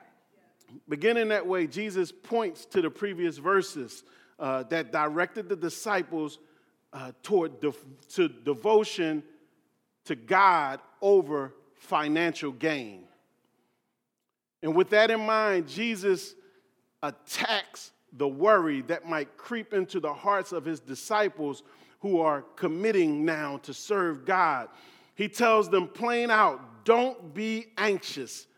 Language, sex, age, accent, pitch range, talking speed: English, male, 40-59, American, 165-225 Hz, 115 wpm